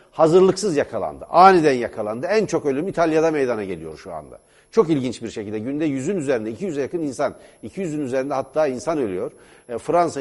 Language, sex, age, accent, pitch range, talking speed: Turkish, male, 60-79, native, 130-190 Hz, 165 wpm